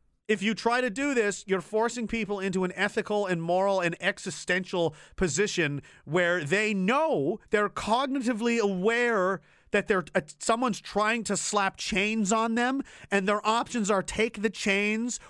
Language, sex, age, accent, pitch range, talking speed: English, male, 40-59, American, 195-255 Hz, 155 wpm